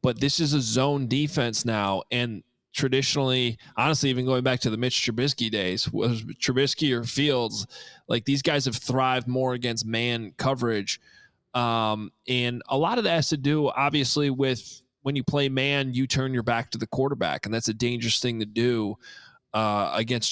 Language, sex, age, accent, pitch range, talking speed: English, male, 20-39, American, 120-140 Hz, 185 wpm